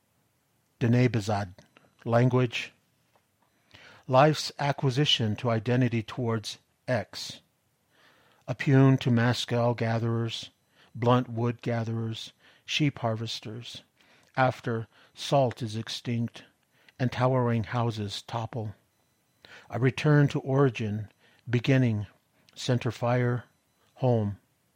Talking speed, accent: 80 wpm, American